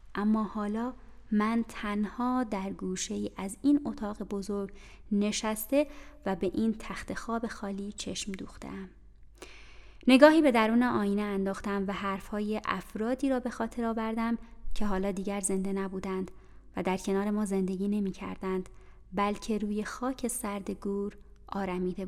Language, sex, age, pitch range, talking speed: Persian, female, 20-39, 195-245 Hz, 135 wpm